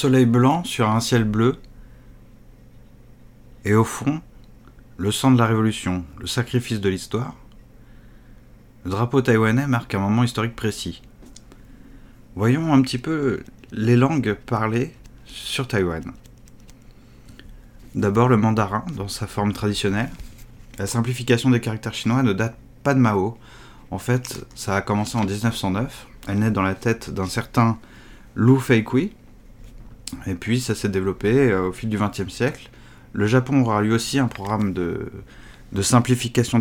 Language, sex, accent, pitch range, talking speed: French, male, French, 105-125 Hz, 145 wpm